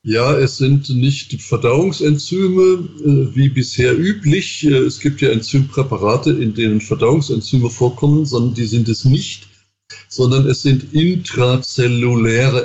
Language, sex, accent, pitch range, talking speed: German, male, German, 115-145 Hz, 120 wpm